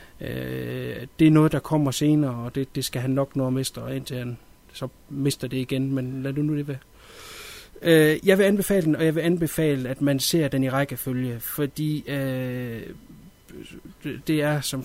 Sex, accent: male, native